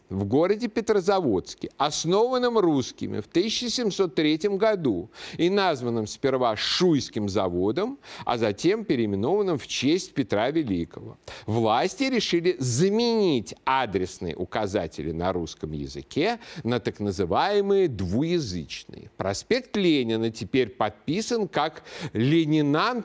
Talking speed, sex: 100 wpm, male